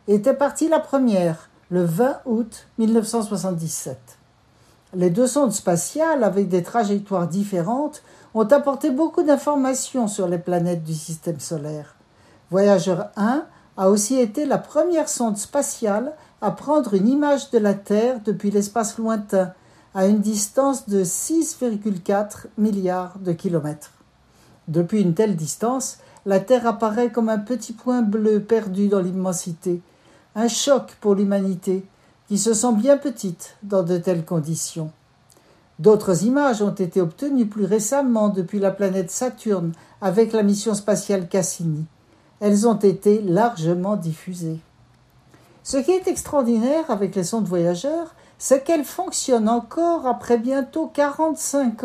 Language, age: French, 60-79